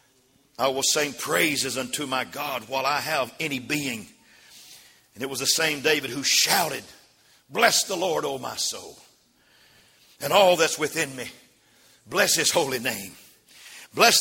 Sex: male